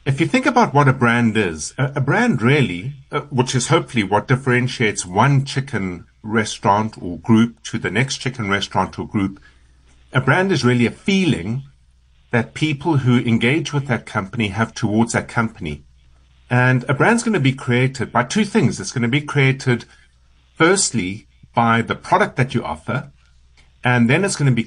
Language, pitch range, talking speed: English, 95-135 Hz, 180 wpm